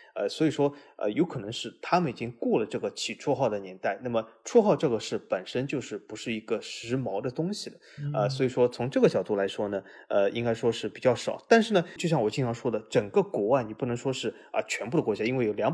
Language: Chinese